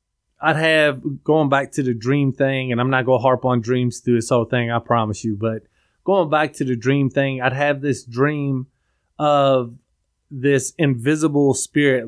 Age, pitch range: 20-39, 125-145 Hz